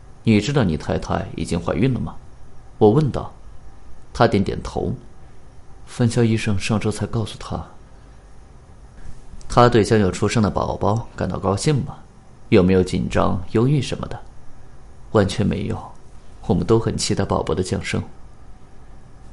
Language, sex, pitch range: Chinese, male, 95-115 Hz